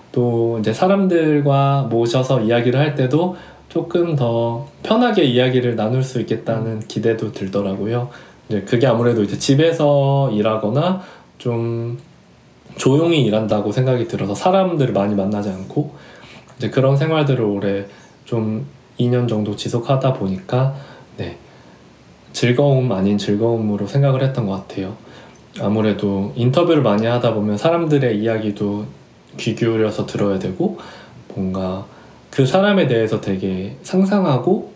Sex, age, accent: male, 20-39, native